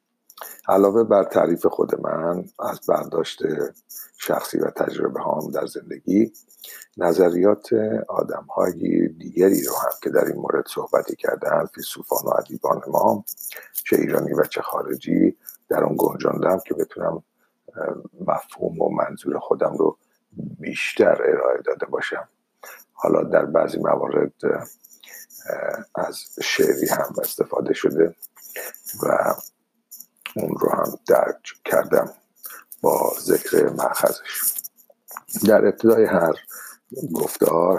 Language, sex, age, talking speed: Persian, male, 50-69, 110 wpm